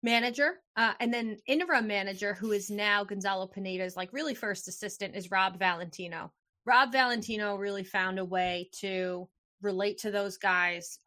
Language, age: English, 20-39